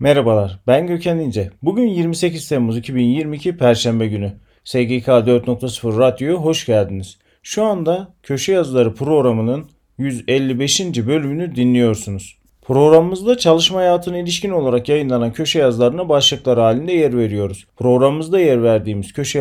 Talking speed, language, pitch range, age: 120 wpm, Turkish, 120-165 Hz, 40-59